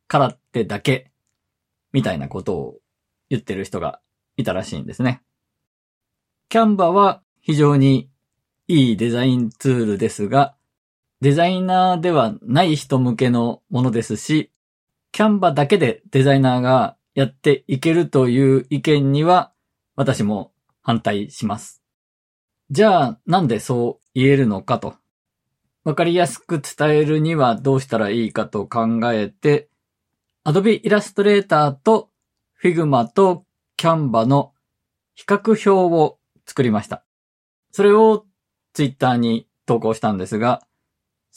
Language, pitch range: Japanese, 120-165 Hz